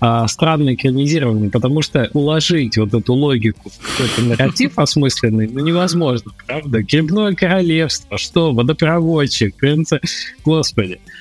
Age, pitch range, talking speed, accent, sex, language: 20-39, 110-165 Hz, 105 wpm, native, male, Russian